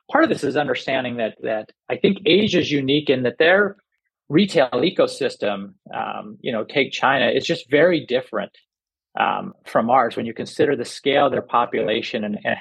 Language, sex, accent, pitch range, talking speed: English, male, American, 110-145 Hz, 185 wpm